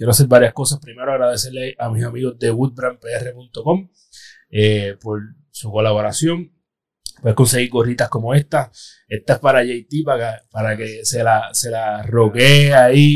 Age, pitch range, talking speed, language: 30-49, 120-150 Hz, 150 wpm, Spanish